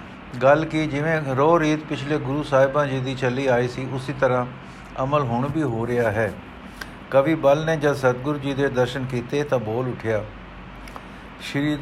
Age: 60-79